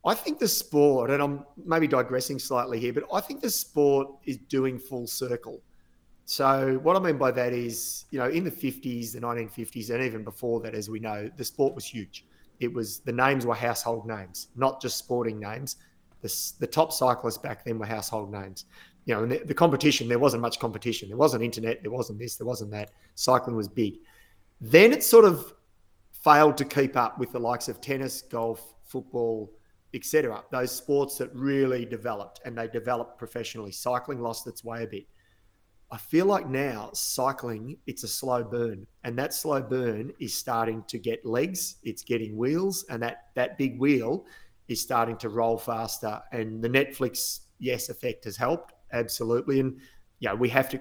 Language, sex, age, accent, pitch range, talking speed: English, male, 30-49, Australian, 115-135 Hz, 190 wpm